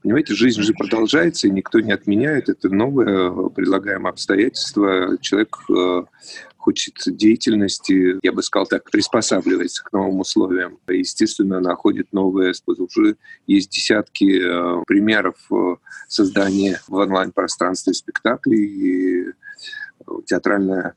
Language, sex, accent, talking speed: Russian, male, native, 110 wpm